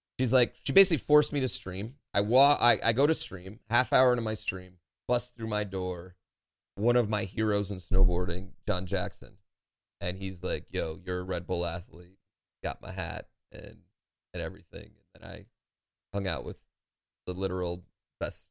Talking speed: 180 wpm